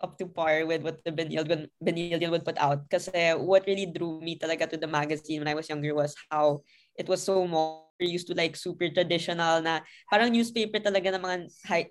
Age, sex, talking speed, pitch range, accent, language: 20-39, female, 220 wpm, 160-185 Hz, Filipino, English